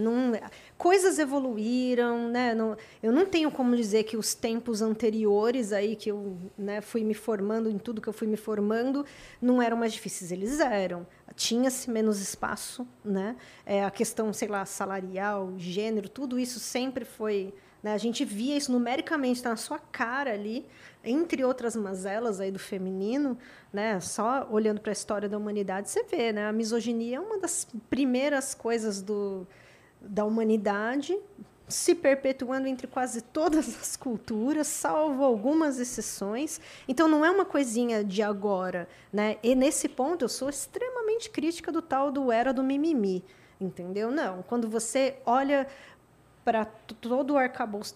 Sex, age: female, 20-39